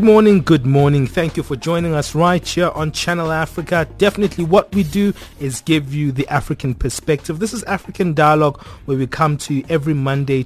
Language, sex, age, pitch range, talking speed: English, male, 30-49, 120-160 Hz, 200 wpm